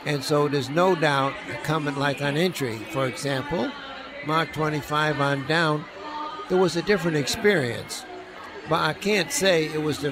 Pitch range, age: 140-175 Hz, 60-79